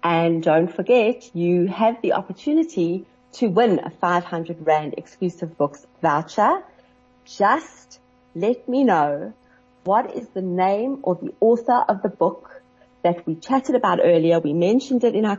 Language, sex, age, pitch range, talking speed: English, female, 40-59, 170-240 Hz, 150 wpm